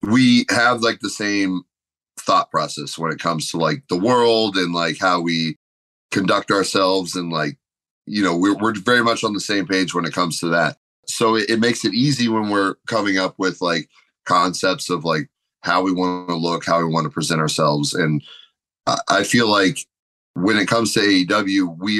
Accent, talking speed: American, 200 wpm